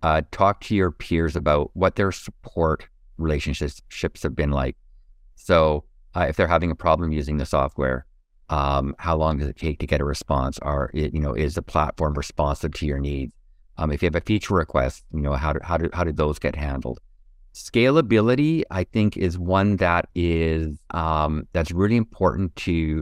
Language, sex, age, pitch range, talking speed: English, male, 50-69, 75-90 Hz, 185 wpm